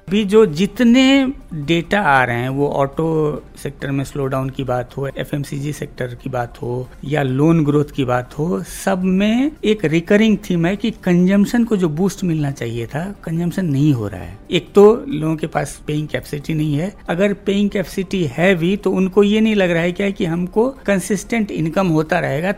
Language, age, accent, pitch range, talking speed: Hindi, 60-79, native, 155-205 Hz, 195 wpm